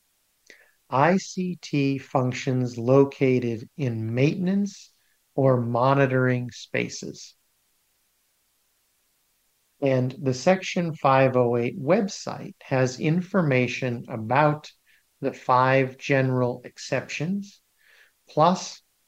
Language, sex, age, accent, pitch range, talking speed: English, male, 50-69, American, 120-140 Hz, 65 wpm